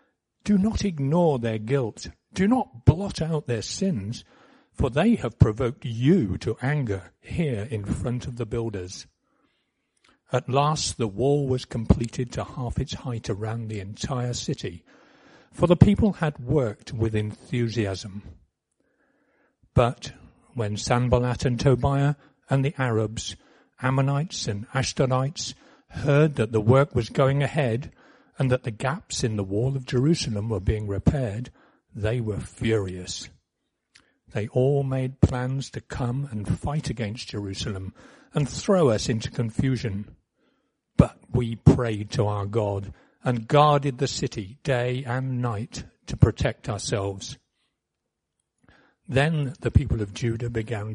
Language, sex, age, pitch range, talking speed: English, male, 50-69, 110-140 Hz, 135 wpm